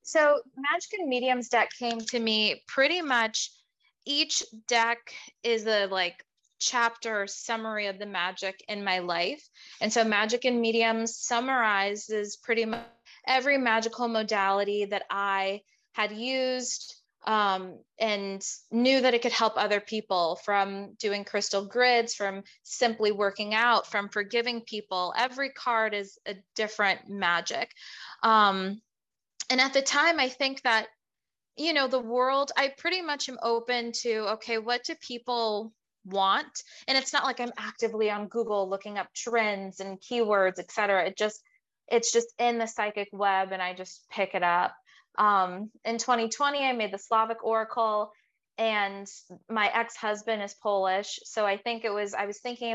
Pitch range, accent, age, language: 200-245 Hz, American, 20-39, English